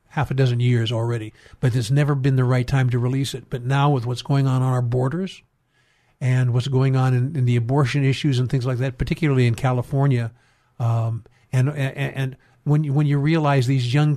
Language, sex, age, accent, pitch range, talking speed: English, male, 50-69, American, 130-150 Hz, 215 wpm